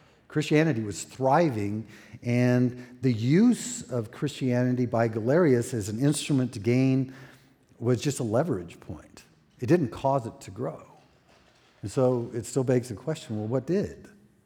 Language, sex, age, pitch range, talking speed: English, male, 50-69, 110-135 Hz, 150 wpm